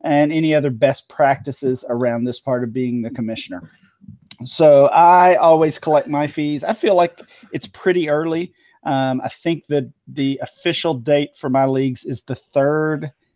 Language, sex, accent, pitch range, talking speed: English, male, American, 125-150 Hz, 165 wpm